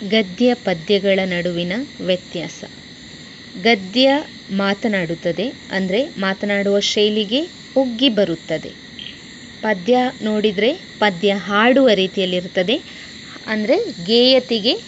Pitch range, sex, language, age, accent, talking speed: 195-255 Hz, female, English, 20-39, Indian, 70 wpm